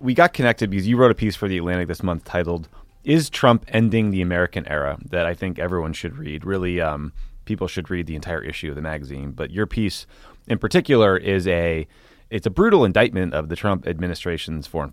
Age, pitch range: 30-49, 85-100 Hz